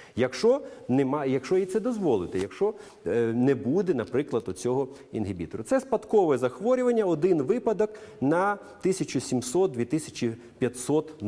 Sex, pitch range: male, 110-175 Hz